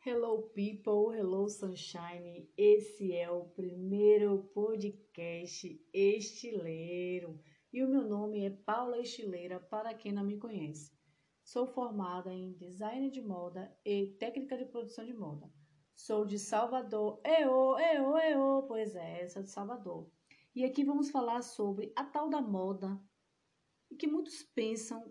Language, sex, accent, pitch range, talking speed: Portuguese, female, Brazilian, 180-255 Hz, 135 wpm